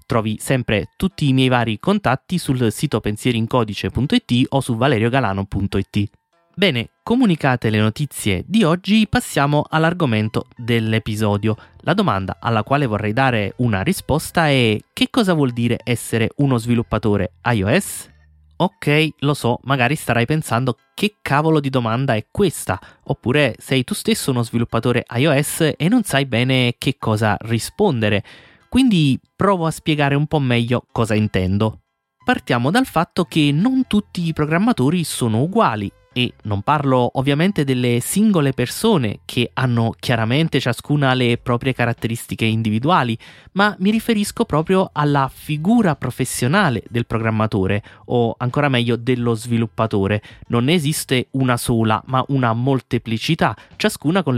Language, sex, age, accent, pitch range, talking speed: Italian, male, 20-39, native, 115-155 Hz, 135 wpm